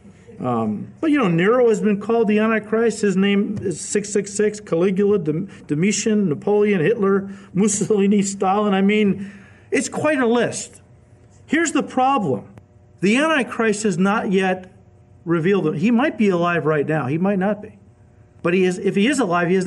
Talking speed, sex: 170 wpm, male